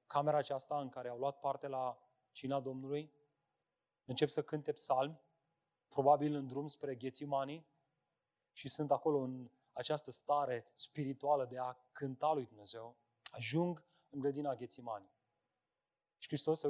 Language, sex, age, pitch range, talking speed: Romanian, male, 30-49, 130-190 Hz, 135 wpm